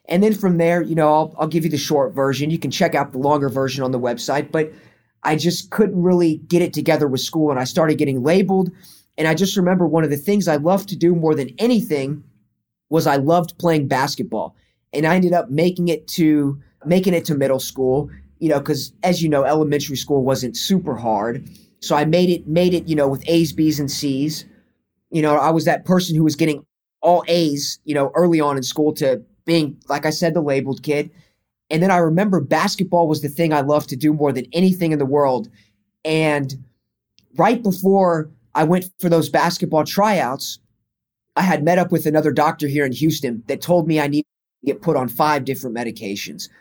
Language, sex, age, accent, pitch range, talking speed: English, male, 20-39, American, 140-170 Hz, 215 wpm